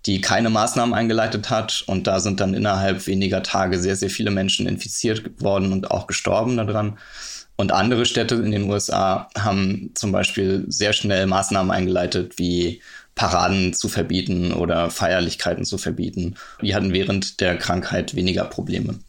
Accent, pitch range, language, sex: German, 95-115 Hz, German, male